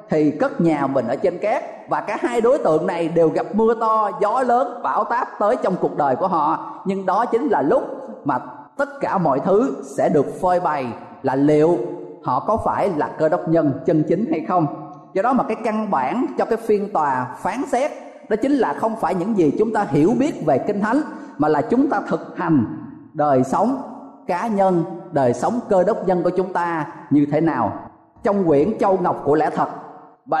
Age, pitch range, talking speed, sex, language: 20-39, 160-220 Hz, 215 wpm, male, Vietnamese